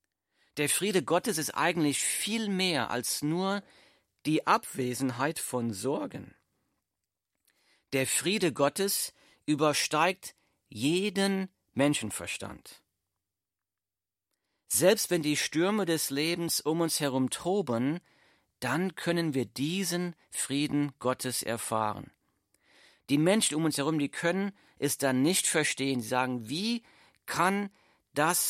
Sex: male